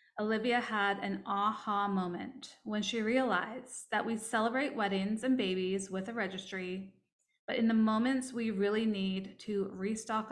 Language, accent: English, American